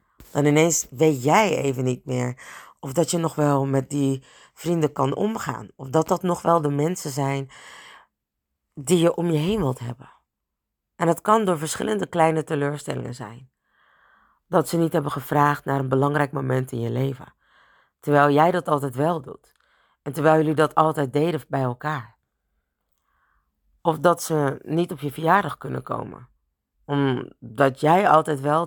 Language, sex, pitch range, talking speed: Dutch, female, 130-165 Hz, 165 wpm